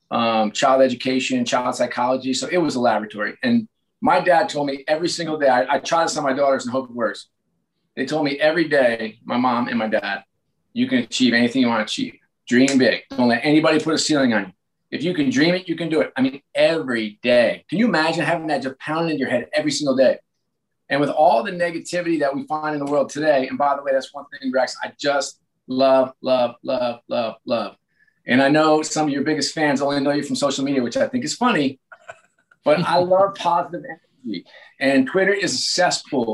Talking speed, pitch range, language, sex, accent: 230 wpm, 130-170 Hz, English, male, American